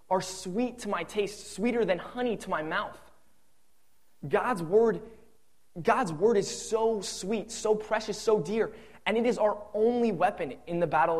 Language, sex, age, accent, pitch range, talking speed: English, male, 20-39, American, 170-220 Hz, 165 wpm